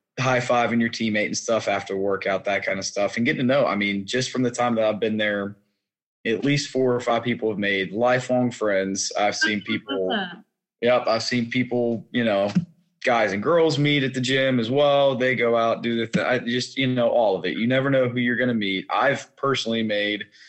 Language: English